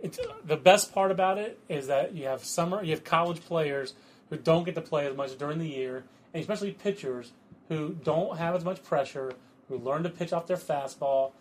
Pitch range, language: 130-165 Hz, English